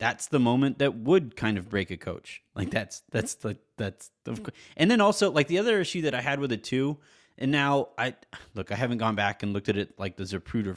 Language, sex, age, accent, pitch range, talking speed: English, male, 30-49, American, 105-140 Hz, 240 wpm